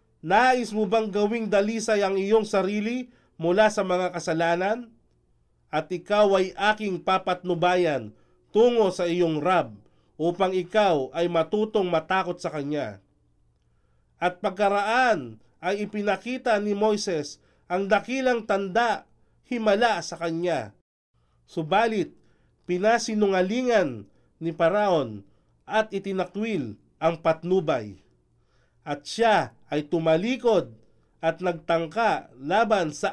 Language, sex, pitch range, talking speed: Filipino, male, 160-215 Hz, 100 wpm